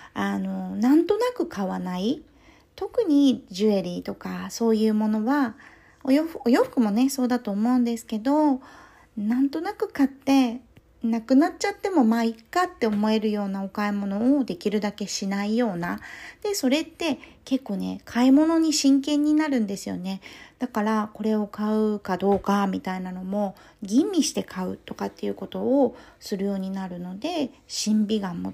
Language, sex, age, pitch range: Japanese, female, 40-59, 195-260 Hz